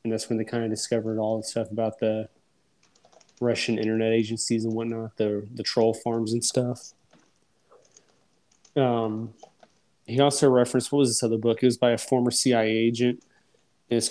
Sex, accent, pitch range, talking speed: male, American, 105-115 Hz, 170 wpm